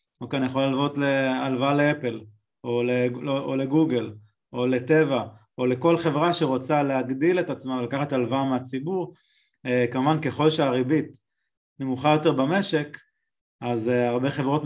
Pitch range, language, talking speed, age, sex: 125-150 Hz, Hebrew, 125 wpm, 20-39, male